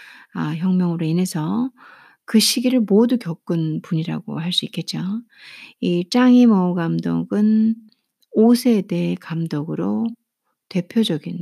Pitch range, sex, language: 175-235 Hz, female, Korean